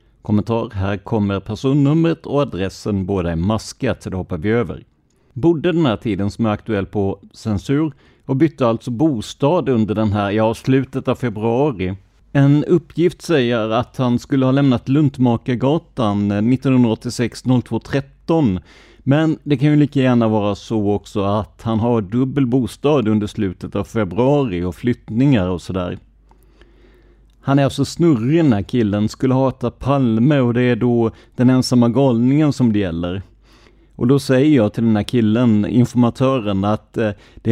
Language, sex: Swedish, male